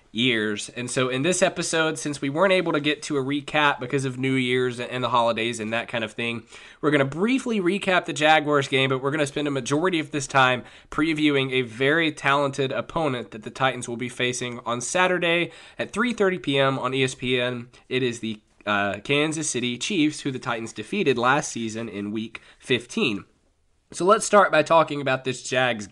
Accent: American